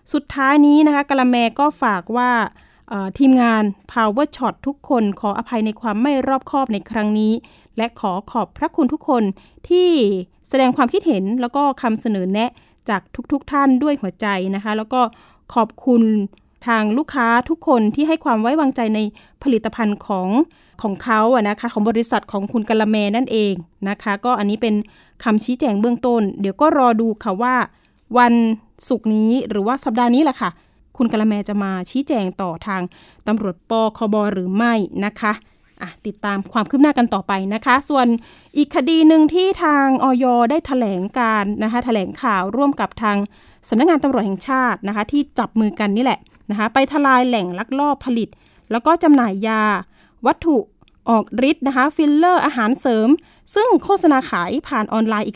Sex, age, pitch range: female, 20-39, 210-270 Hz